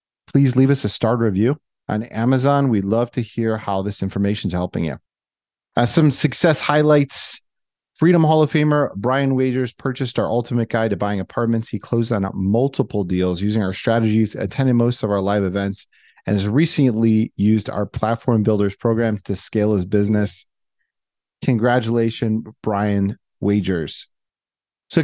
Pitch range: 100-130 Hz